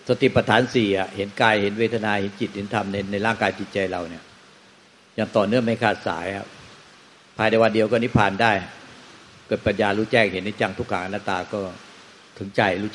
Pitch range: 95-115 Hz